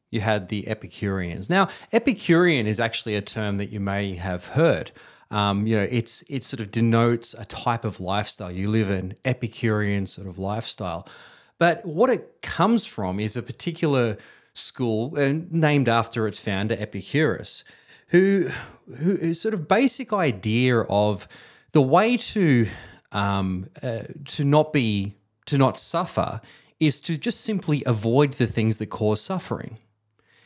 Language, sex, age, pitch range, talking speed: English, male, 30-49, 105-170 Hz, 150 wpm